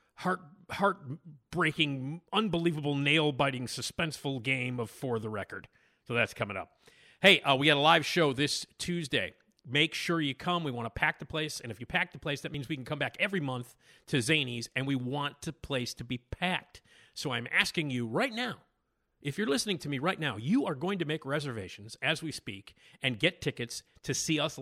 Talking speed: 205 wpm